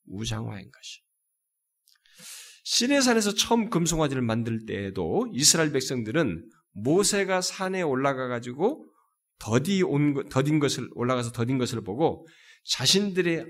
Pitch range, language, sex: 130-220 Hz, Korean, male